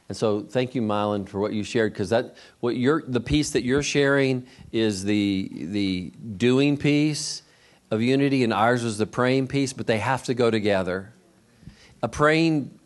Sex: male